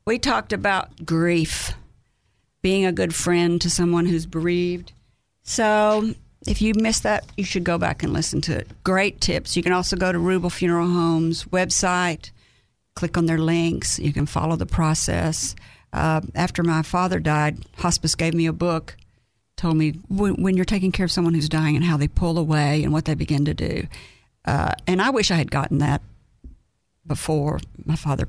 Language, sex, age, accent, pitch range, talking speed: English, female, 50-69, American, 150-185 Hz, 185 wpm